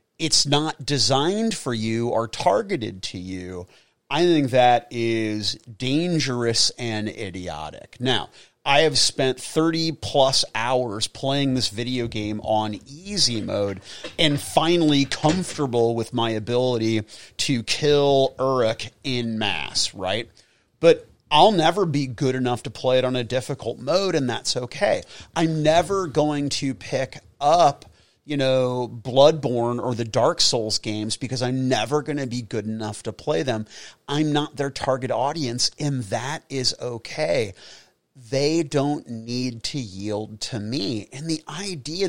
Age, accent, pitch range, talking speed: 30-49, American, 115-145 Hz, 145 wpm